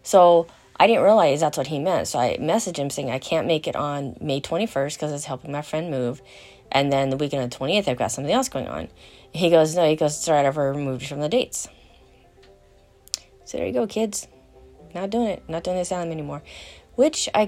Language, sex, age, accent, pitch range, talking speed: English, female, 30-49, American, 135-180 Hz, 225 wpm